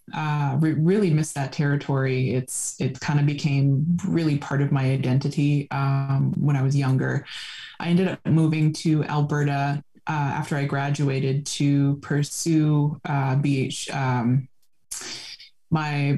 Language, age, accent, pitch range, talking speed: English, 20-39, American, 140-165 Hz, 140 wpm